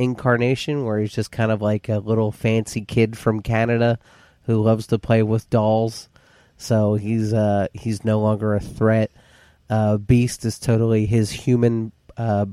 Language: English